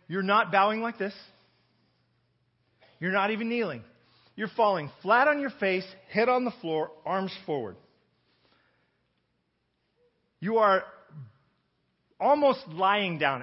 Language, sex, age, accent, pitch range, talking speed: English, male, 40-59, American, 170-230 Hz, 115 wpm